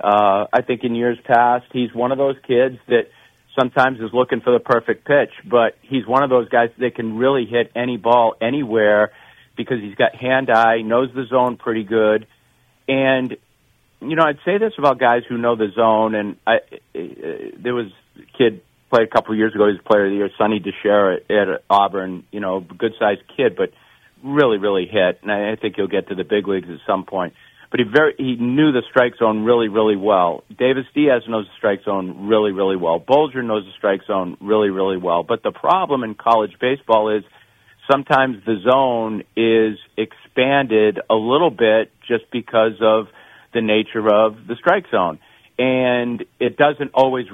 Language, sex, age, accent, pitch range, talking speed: English, male, 50-69, American, 105-125 Hz, 195 wpm